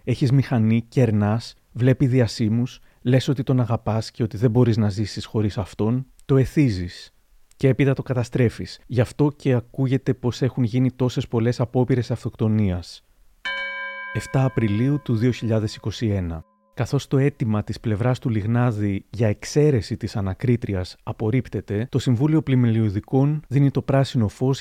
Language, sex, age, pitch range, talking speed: Greek, male, 30-49, 110-130 Hz, 140 wpm